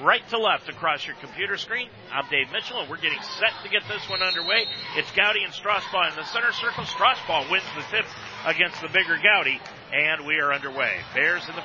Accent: American